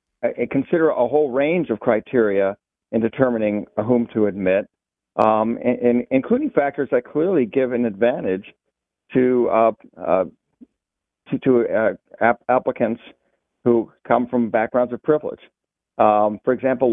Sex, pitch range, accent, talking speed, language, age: male, 115-130 Hz, American, 130 wpm, English, 50-69